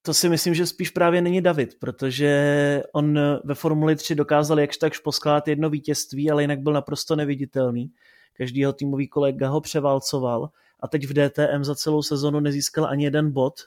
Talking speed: 175 wpm